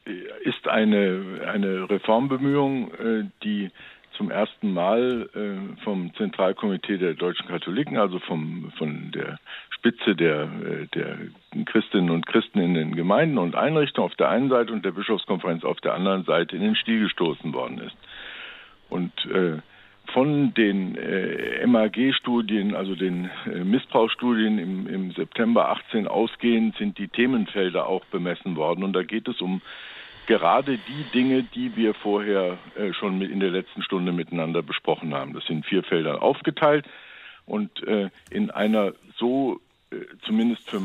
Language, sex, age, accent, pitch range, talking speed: German, male, 60-79, German, 100-140 Hz, 145 wpm